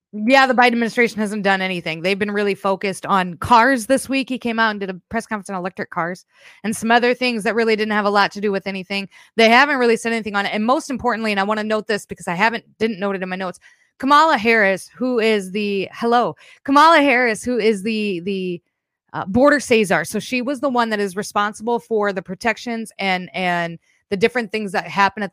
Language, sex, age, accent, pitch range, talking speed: English, female, 20-39, American, 195-240 Hz, 235 wpm